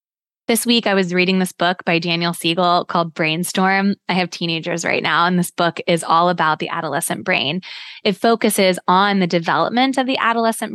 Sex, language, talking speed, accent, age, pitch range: female, English, 190 wpm, American, 20-39, 170-205 Hz